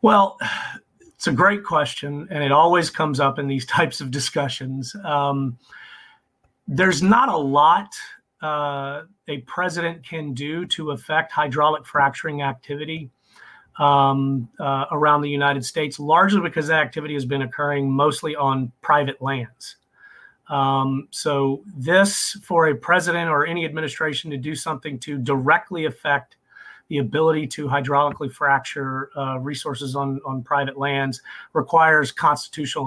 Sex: male